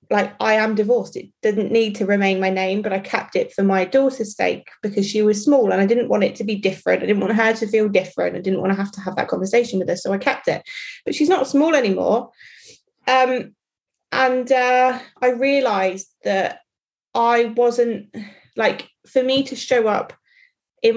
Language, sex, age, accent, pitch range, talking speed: English, female, 20-39, British, 200-250 Hz, 210 wpm